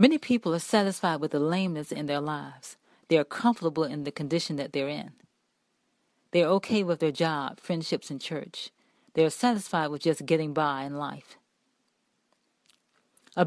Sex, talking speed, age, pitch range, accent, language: female, 170 wpm, 40-59, 155-195 Hz, American, English